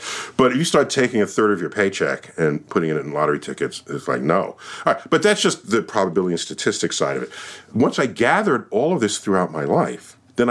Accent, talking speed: American, 235 wpm